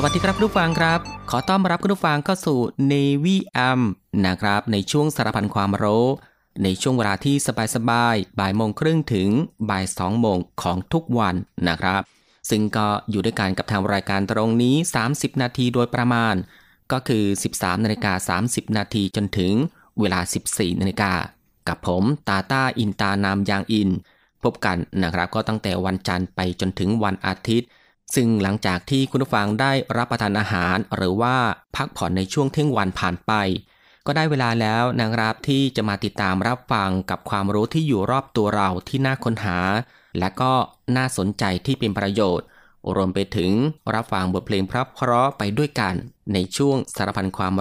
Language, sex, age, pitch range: Thai, male, 20-39, 95-125 Hz